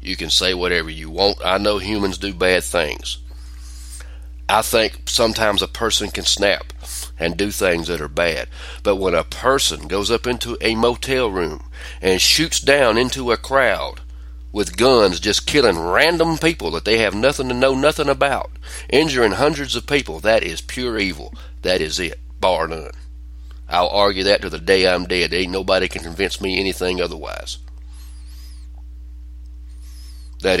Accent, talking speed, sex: American, 165 wpm, male